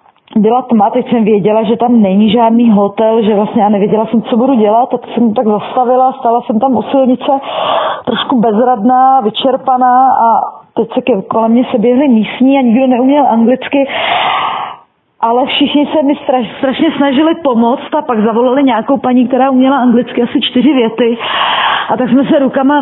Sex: female